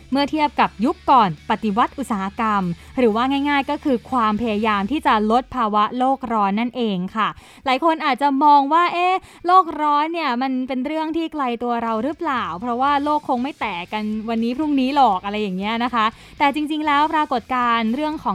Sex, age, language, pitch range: female, 20-39, Thai, 220-285 Hz